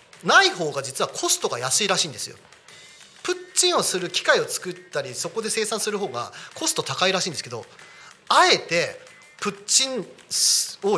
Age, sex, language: 40-59, male, Japanese